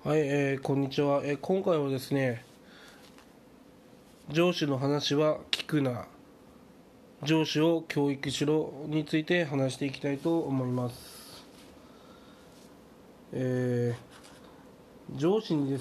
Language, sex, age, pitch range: Japanese, male, 20-39, 135-175 Hz